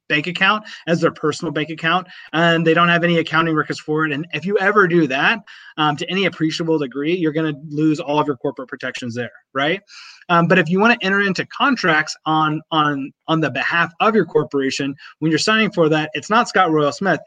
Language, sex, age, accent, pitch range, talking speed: English, male, 30-49, American, 145-175 Hz, 225 wpm